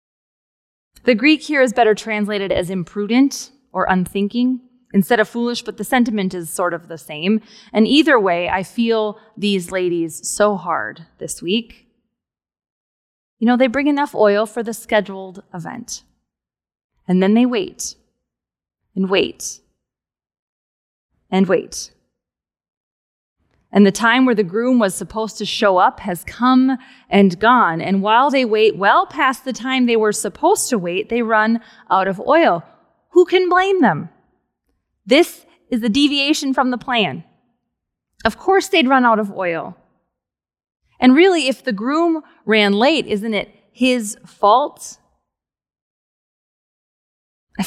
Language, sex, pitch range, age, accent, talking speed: English, female, 195-255 Hz, 20-39, American, 140 wpm